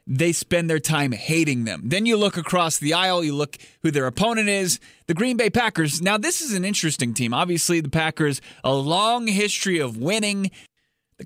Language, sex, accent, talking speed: English, male, American, 195 wpm